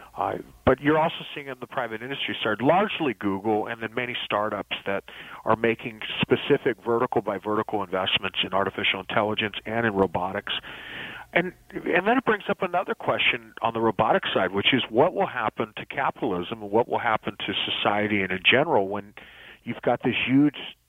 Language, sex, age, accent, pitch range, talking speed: English, male, 40-59, American, 100-125 Hz, 180 wpm